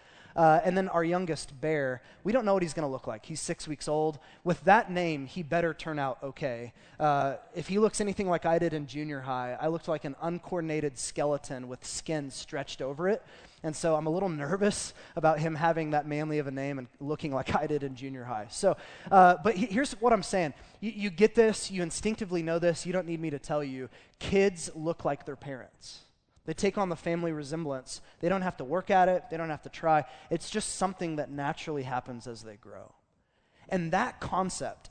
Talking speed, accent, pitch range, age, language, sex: 220 wpm, American, 145-190 Hz, 20-39, English, male